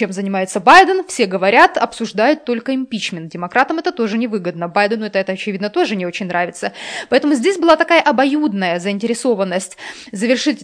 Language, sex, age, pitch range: Russian, female, 20-39, 205-295 Hz